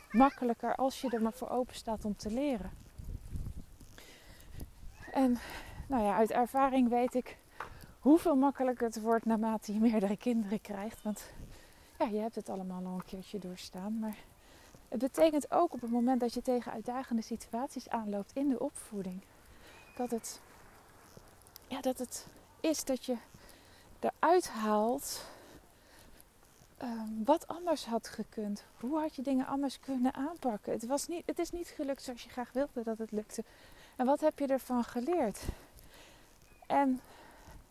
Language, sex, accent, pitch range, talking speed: Dutch, female, Dutch, 220-275 Hz, 150 wpm